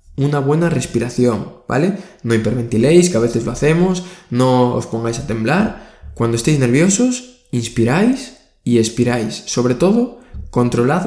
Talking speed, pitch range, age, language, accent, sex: 135 wpm, 115-145 Hz, 20-39, Spanish, Spanish, male